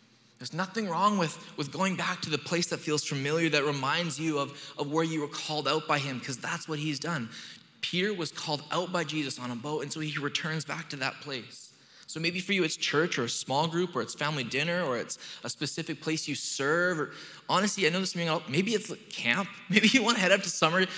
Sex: male